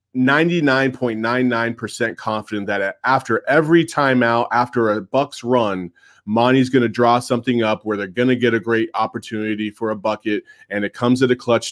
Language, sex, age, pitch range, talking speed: English, male, 30-49, 115-145 Hz, 170 wpm